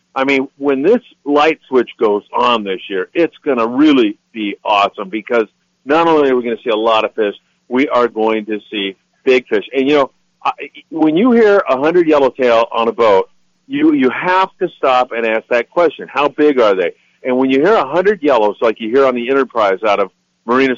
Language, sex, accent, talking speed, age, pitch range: English, male, American, 220 wpm, 50-69, 115-155 Hz